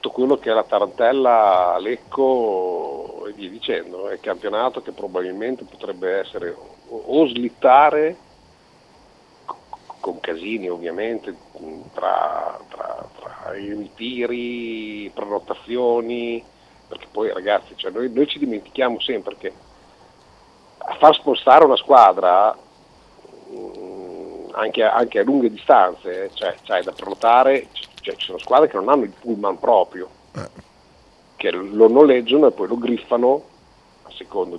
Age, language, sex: 50-69, Italian, male